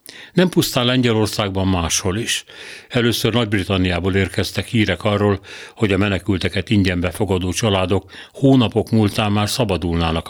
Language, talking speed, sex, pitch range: Hungarian, 115 wpm, male, 95-115 Hz